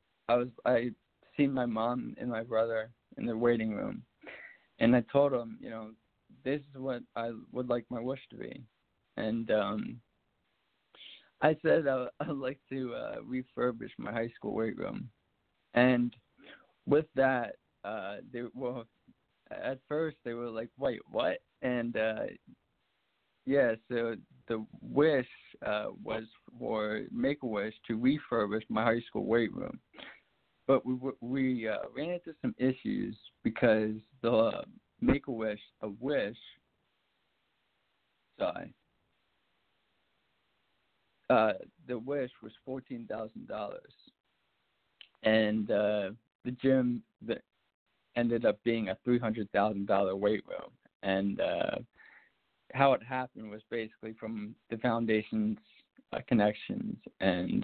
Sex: male